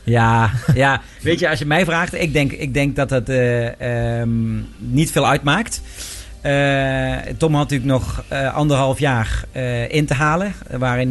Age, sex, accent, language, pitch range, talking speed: 40-59, male, Dutch, Dutch, 120-155 Hz, 175 wpm